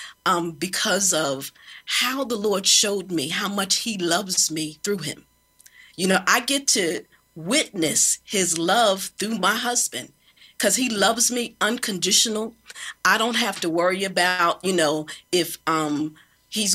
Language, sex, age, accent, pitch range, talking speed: English, female, 40-59, American, 170-240 Hz, 150 wpm